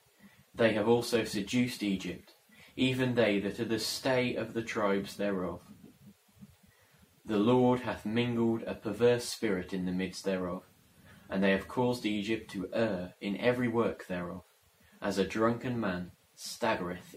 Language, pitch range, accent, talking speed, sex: English, 95-120 Hz, British, 145 wpm, male